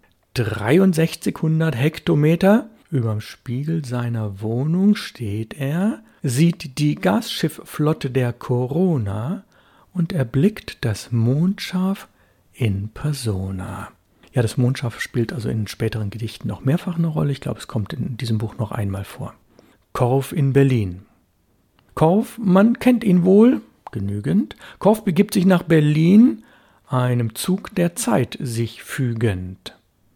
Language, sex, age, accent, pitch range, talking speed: German, male, 60-79, German, 120-190 Hz, 120 wpm